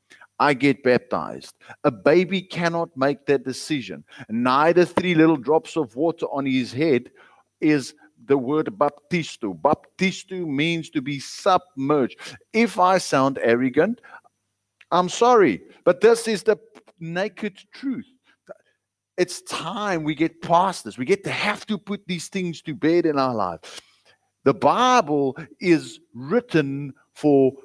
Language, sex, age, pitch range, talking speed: English, male, 50-69, 135-180 Hz, 135 wpm